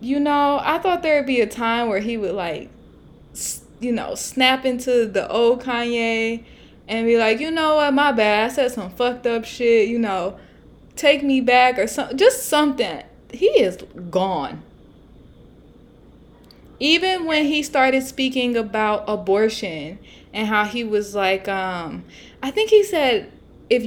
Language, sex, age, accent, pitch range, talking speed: English, female, 20-39, American, 195-260 Hz, 160 wpm